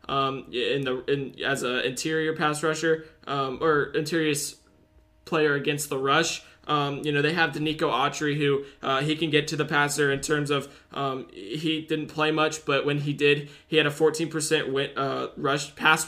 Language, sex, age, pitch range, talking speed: English, male, 20-39, 135-155 Hz, 190 wpm